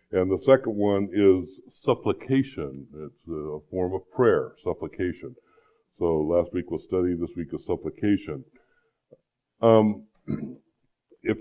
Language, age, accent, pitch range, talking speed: English, 60-79, American, 85-115 Hz, 120 wpm